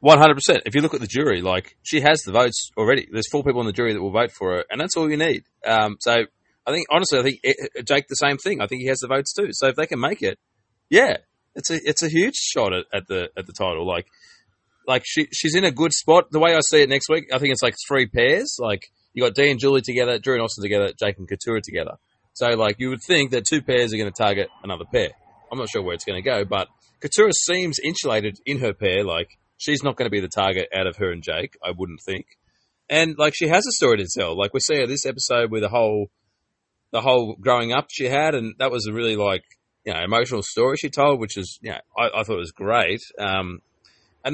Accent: Australian